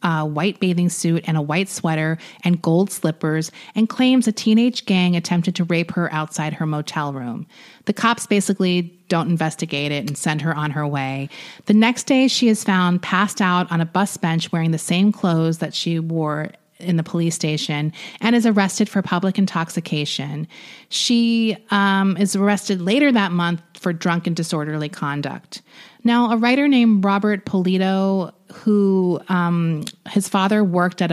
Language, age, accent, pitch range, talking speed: English, 30-49, American, 165-205 Hz, 170 wpm